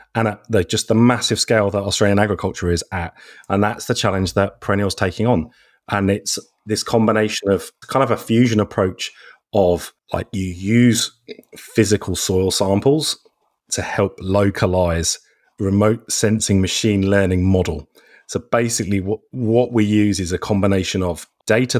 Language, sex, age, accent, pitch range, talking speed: English, male, 30-49, British, 95-115 Hz, 155 wpm